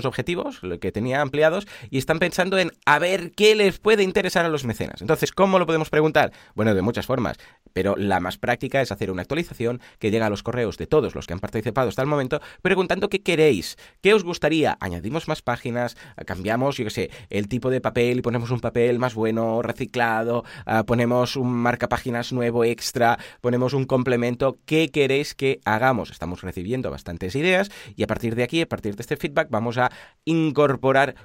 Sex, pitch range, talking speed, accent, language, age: male, 110-150 Hz, 200 wpm, Spanish, Spanish, 30-49